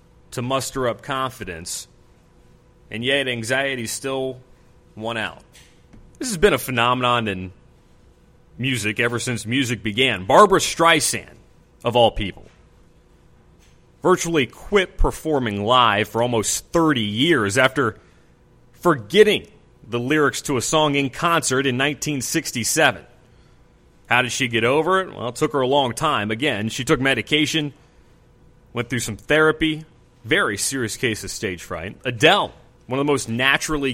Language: English